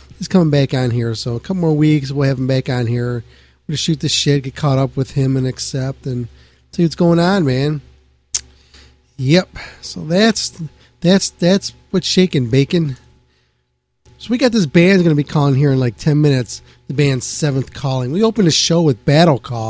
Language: English